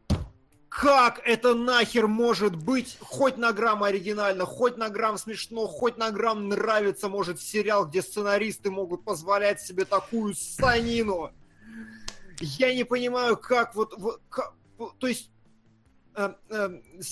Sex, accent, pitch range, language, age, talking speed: male, native, 175-240 Hz, Russian, 30-49, 125 wpm